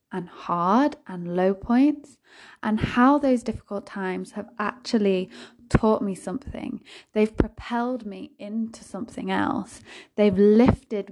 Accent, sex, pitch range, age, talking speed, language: British, female, 190-240 Hz, 10-29, 125 wpm, English